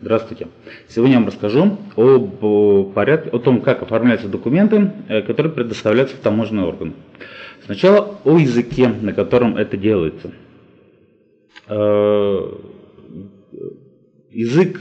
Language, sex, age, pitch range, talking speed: Russian, male, 30-49, 105-135 Hz, 95 wpm